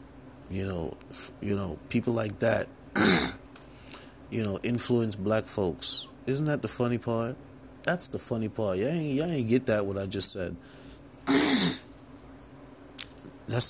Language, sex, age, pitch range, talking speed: English, male, 30-49, 100-135 Hz, 140 wpm